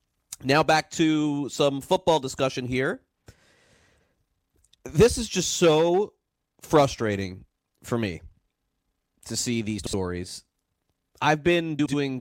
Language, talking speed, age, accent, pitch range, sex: English, 105 wpm, 30-49, American, 100-140 Hz, male